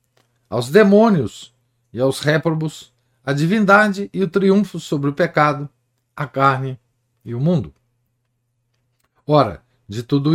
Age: 50-69